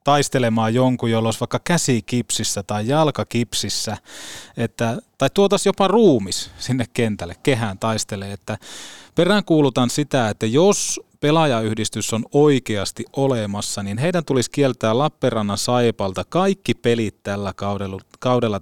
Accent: native